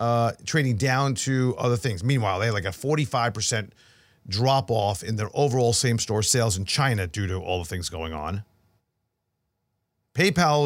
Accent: American